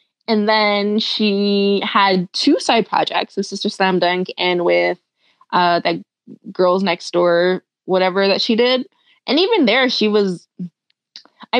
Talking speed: 145 wpm